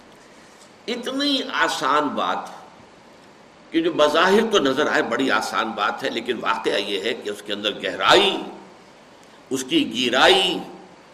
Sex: male